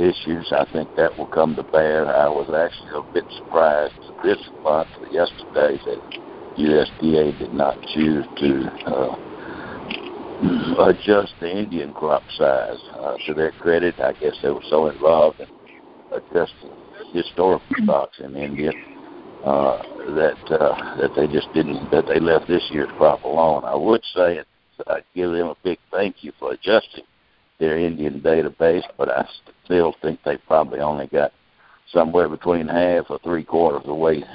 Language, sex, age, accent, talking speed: English, male, 60-79, American, 160 wpm